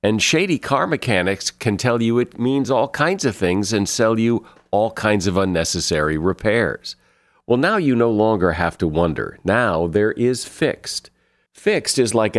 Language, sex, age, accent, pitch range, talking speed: English, male, 50-69, American, 95-130 Hz, 175 wpm